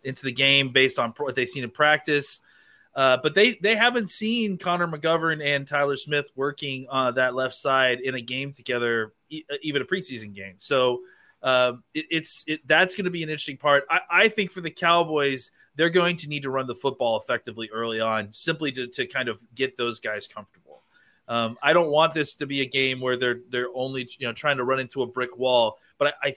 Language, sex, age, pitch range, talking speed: English, male, 30-49, 120-150 Hz, 225 wpm